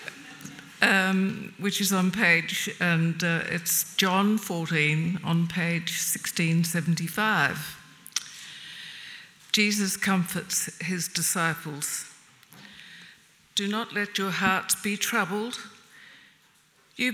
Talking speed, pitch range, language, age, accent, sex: 90 wpm, 165-210 Hz, English, 60-79, British, female